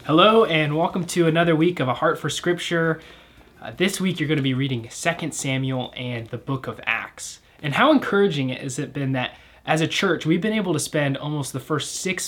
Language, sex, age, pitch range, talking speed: English, male, 20-39, 130-160 Hz, 220 wpm